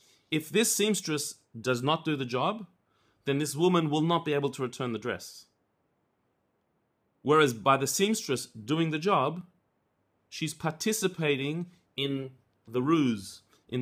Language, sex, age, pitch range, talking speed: English, male, 30-49, 120-160 Hz, 140 wpm